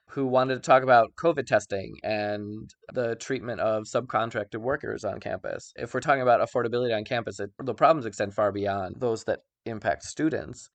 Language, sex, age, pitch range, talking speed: English, male, 20-39, 105-130 Hz, 180 wpm